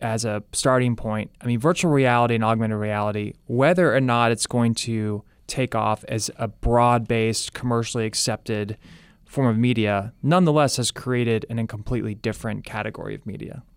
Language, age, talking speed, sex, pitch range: English, 20-39, 155 wpm, male, 110-130 Hz